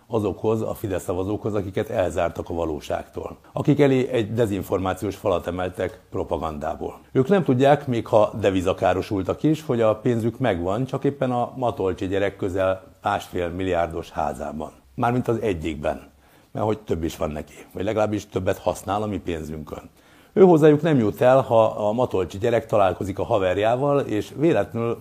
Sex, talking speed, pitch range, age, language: male, 150 wpm, 95-125 Hz, 60-79, Hungarian